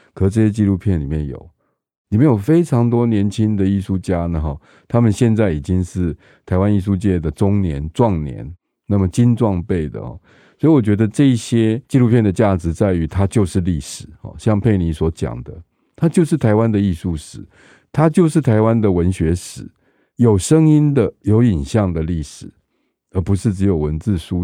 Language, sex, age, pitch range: Chinese, male, 50-69, 85-120 Hz